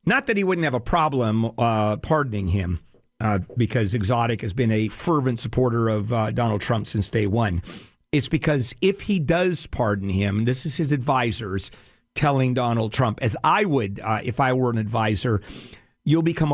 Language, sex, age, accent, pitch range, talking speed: English, male, 50-69, American, 110-150 Hz, 180 wpm